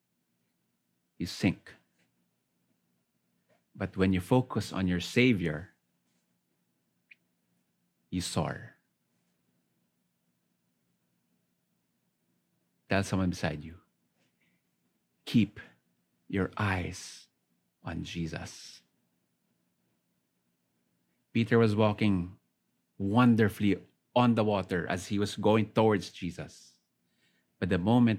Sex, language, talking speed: male, English, 75 wpm